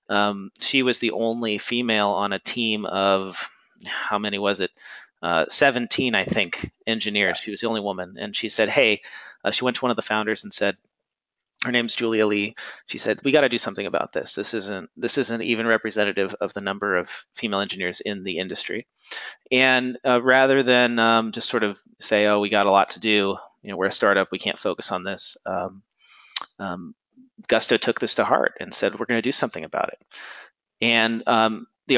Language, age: English, 30-49